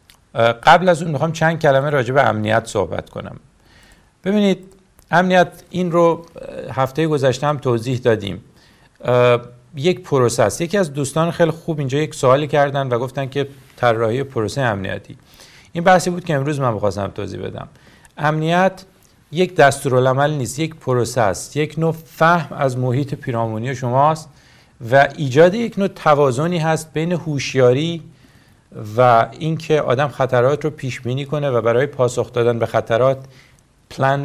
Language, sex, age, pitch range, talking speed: English, male, 50-69, 120-155 Hz, 145 wpm